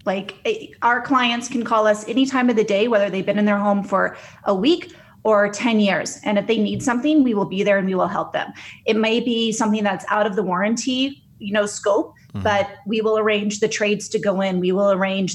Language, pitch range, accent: English, 195-235 Hz, American